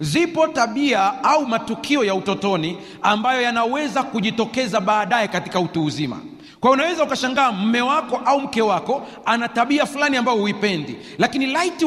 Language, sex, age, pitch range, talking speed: Swahili, male, 40-59, 190-260 Hz, 135 wpm